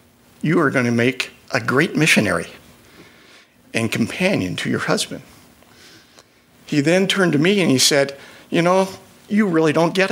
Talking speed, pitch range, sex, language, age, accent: 160 wpm, 130-185 Hz, male, English, 60-79, American